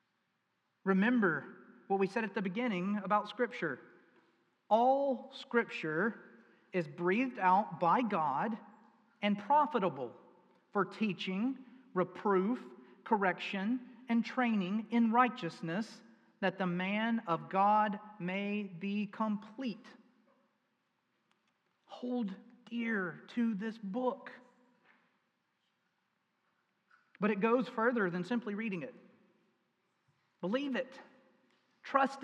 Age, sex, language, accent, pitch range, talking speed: 40-59, male, English, American, 195-235 Hz, 95 wpm